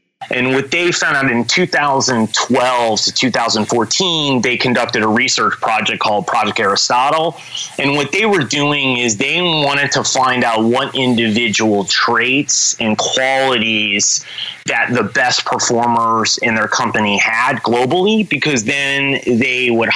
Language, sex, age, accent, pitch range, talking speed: English, male, 30-49, American, 110-140 Hz, 140 wpm